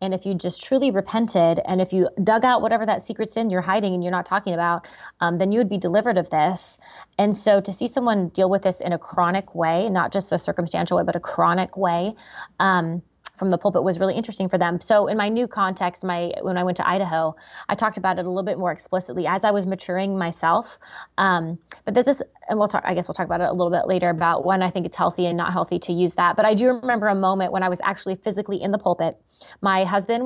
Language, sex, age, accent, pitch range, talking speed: English, female, 20-39, American, 180-205 Hz, 260 wpm